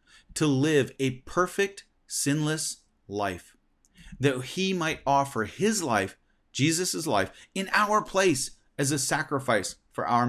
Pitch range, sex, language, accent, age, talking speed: 115-165 Hz, male, English, American, 30-49, 130 wpm